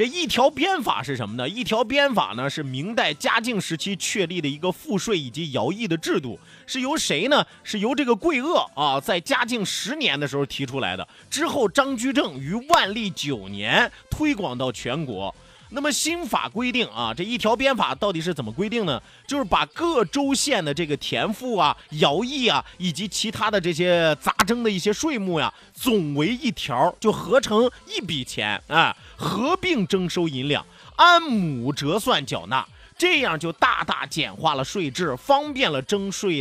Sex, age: male, 30-49